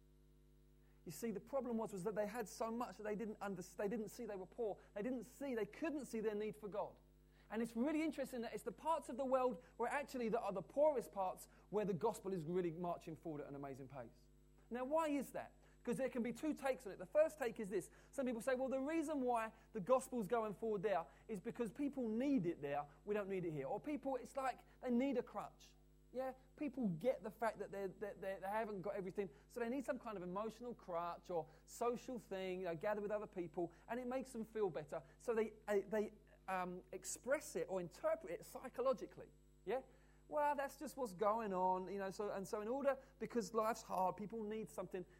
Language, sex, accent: English, male, British